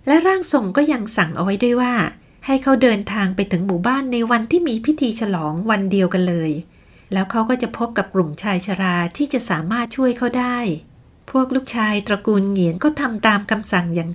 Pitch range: 195-260 Hz